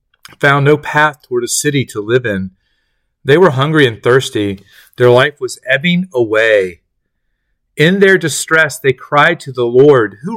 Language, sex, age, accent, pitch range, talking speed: English, male, 40-59, American, 110-145 Hz, 160 wpm